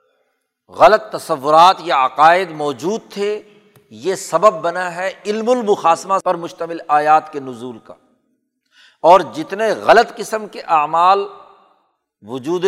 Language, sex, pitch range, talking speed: Urdu, male, 155-215 Hz, 120 wpm